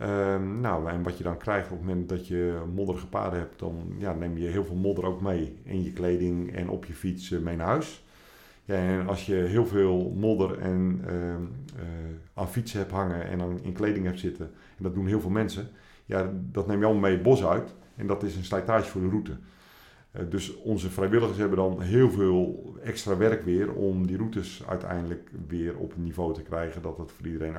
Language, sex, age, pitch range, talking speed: Dutch, male, 50-69, 90-105 Hz, 225 wpm